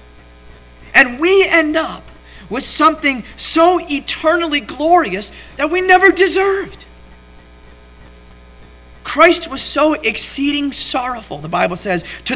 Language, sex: English, male